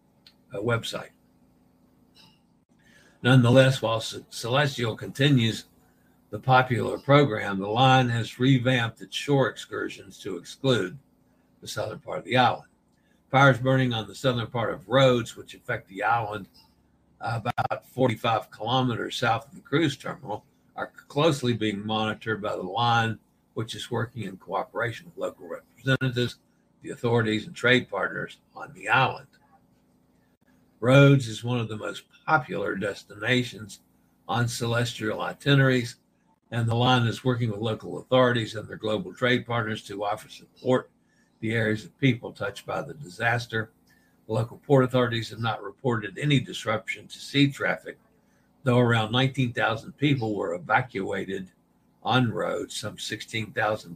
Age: 60-79